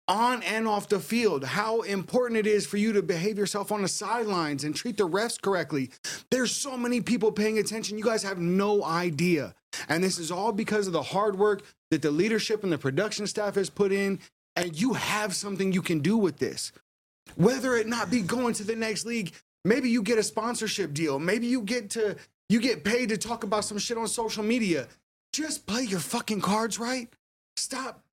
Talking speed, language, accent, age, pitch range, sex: 210 wpm, English, American, 30-49, 185-230 Hz, male